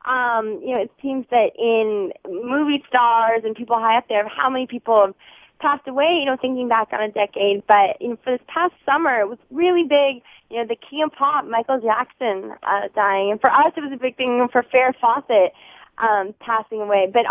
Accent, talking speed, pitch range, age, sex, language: American, 215 wpm, 210-270 Hz, 20-39, female, English